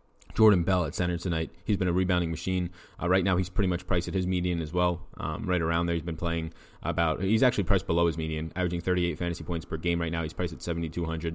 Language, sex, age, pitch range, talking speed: English, male, 20-39, 85-95 Hz, 255 wpm